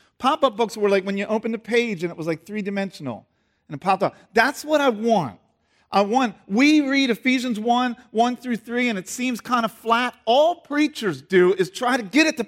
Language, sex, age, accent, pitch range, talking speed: English, male, 40-59, American, 155-225 Hz, 230 wpm